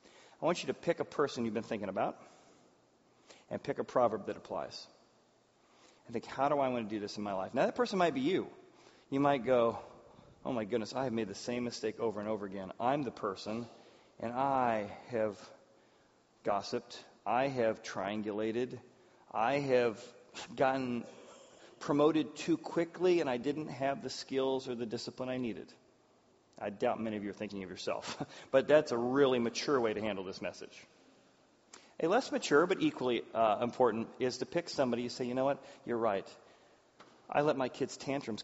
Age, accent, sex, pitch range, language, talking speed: 30-49, American, male, 115-135 Hz, English, 185 wpm